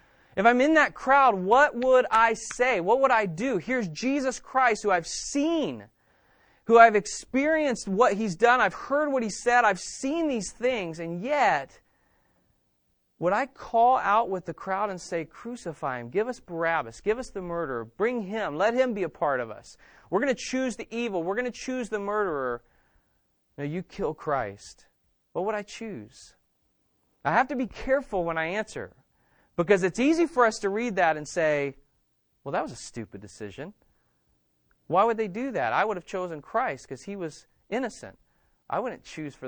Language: English